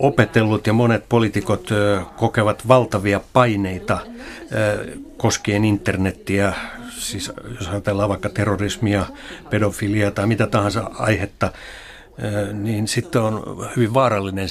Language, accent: Finnish, native